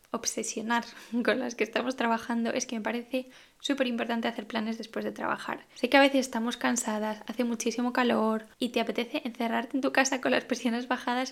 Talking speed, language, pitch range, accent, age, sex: 195 wpm, Spanish, 230-255 Hz, Spanish, 10-29, female